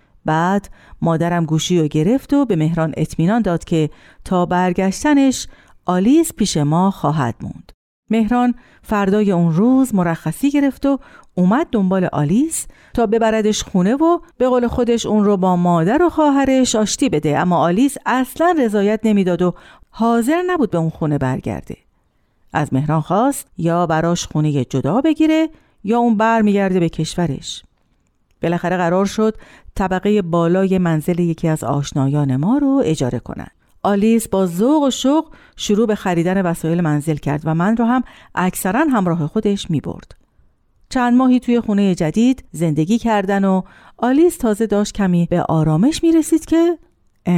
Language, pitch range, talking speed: Persian, 160-235 Hz, 150 wpm